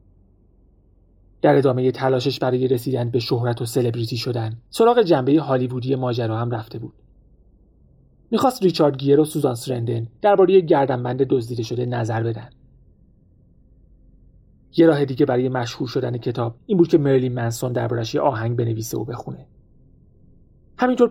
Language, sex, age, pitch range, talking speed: Persian, male, 30-49, 115-155 Hz, 145 wpm